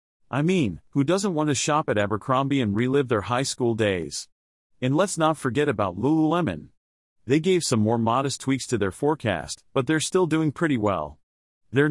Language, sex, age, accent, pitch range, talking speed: English, male, 40-59, American, 110-155 Hz, 185 wpm